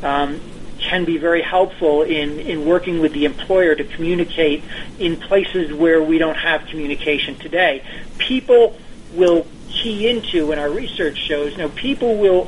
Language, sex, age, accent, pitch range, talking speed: English, male, 40-59, American, 155-195 Hz, 160 wpm